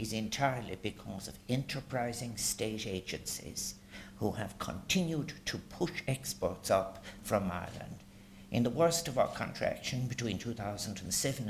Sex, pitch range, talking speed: male, 100-135 Hz, 125 wpm